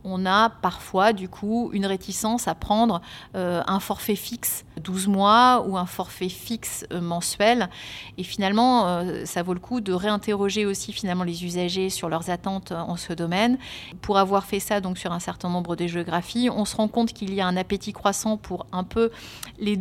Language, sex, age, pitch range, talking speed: French, female, 30-49, 185-215 Hz, 190 wpm